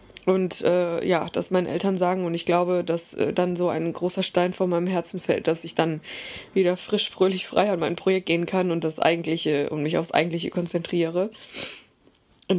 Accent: German